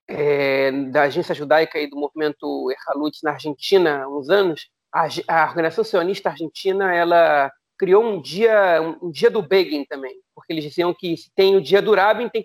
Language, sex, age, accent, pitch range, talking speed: Portuguese, male, 40-59, Brazilian, 165-235 Hz, 190 wpm